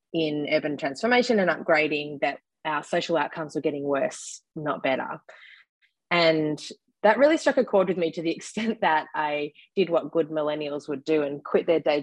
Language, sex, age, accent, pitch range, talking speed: English, female, 20-39, Australian, 150-175 Hz, 185 wpm